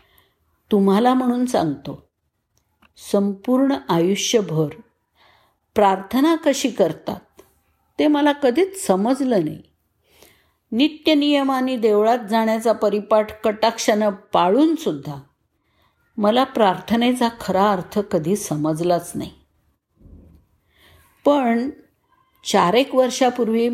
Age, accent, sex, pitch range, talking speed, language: 50-69, native, female, 190-245 Hz, 75 wpm, Marathi